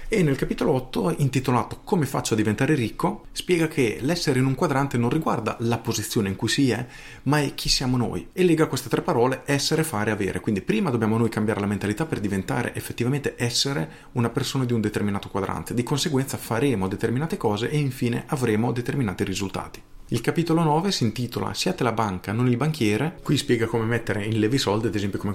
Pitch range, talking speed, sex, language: 100-130 Hz, 200 wpm, male, Italian